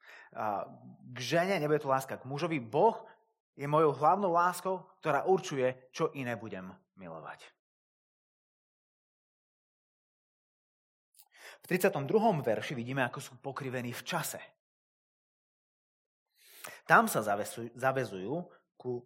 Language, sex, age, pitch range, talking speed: Slovak, male, 30-49, 125-195 Hz, 105 wpm